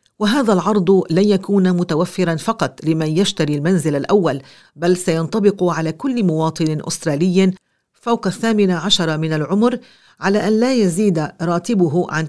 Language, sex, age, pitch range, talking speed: English, female, 50-69, 160-205 Hz, 130 wpm